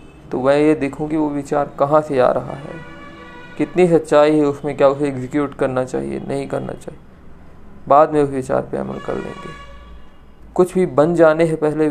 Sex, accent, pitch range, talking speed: male, native, 130-155 Hz, 195 wpm